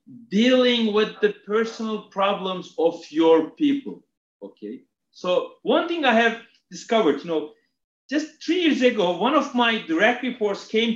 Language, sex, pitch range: English, male, 215-285 Hz